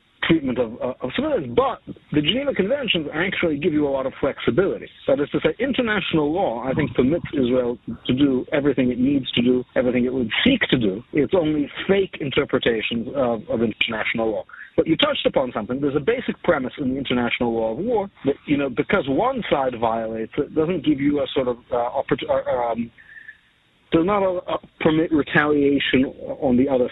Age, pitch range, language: 50-69, 125-180 Hz, English